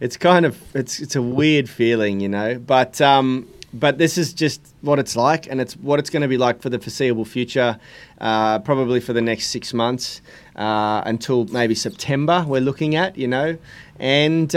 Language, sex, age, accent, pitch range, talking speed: English, male, 30-49, Australian, 120-145 Hz, 200 wpm